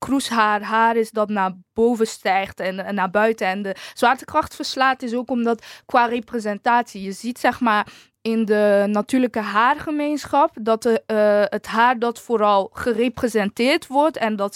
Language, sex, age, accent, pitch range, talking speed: Dutch, female, 20-39, Dutch, 200-245 Hz, 160 wpm